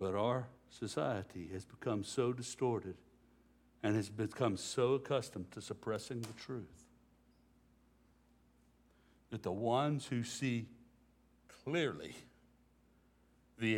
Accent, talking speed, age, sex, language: American, 100 wpm, 60-79, male, English